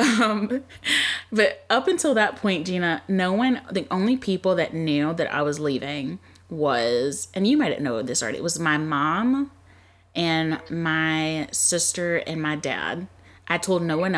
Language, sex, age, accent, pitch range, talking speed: English, female, 20-39, American, 130-175 Hz, 165 wpm